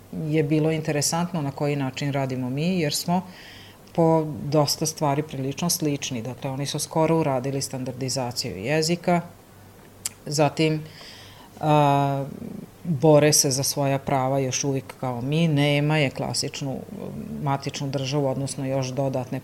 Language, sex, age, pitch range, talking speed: Croatian, female, 40-59, 135-155 Hz, 125 wpm